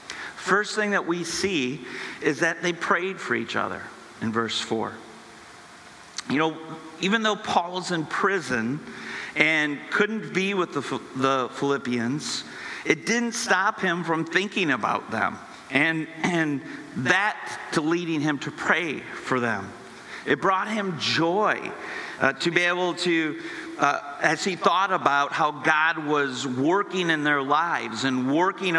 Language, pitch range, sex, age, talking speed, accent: English, 150-190 Hz, male, 50-69, 145 wpm, American